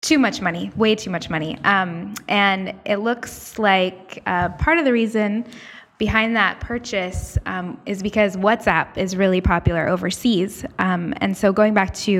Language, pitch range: English, 180-215 Hz